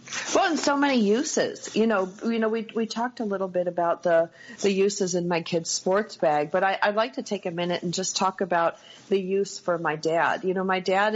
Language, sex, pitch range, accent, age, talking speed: English, female, 170-215 Hz, American, 50-69, 240 wpm